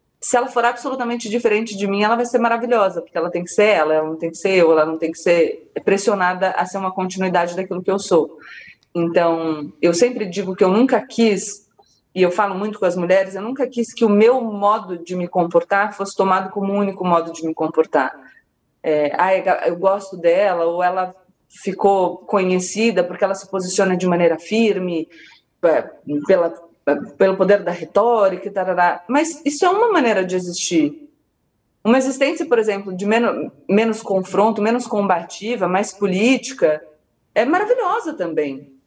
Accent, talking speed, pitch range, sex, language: Brazilian, 180 wpm, 180-245 Hz, female, Portuguese